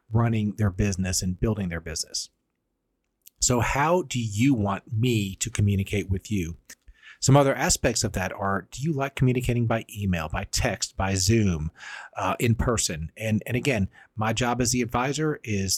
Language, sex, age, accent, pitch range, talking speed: English, male, 40-59, American, 100-125 Hz, 170 wpm